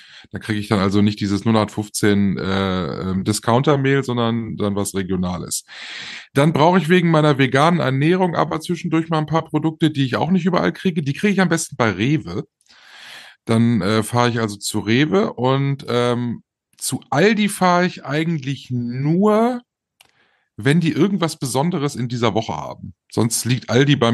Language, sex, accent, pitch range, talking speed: German, male, German, 110-155 Hz, 165 wpm